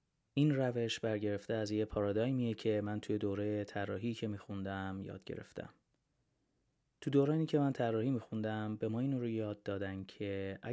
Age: 30-49